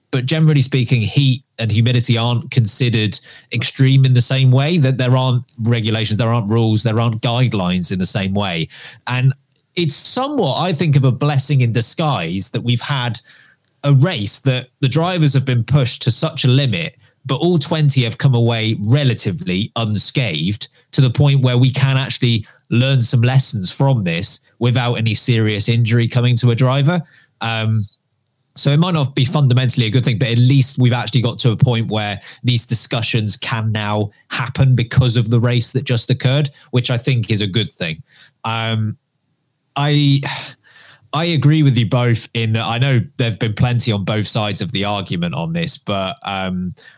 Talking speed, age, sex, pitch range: 180 wpm, 20-39, male, 115-140 Hz